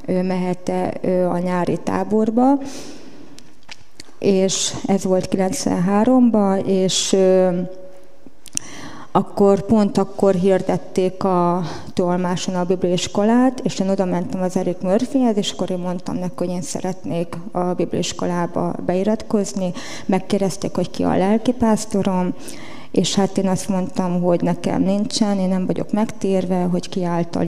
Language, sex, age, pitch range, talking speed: Hungarian, female, 30-49, 185-220 Hz, 125 wpm